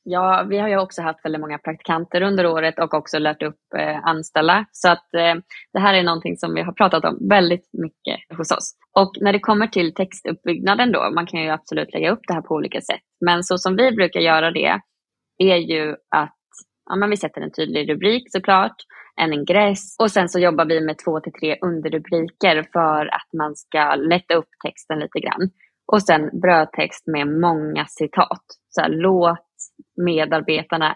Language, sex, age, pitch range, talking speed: English, female, 20-39, 160-190 Hz, 195 wpm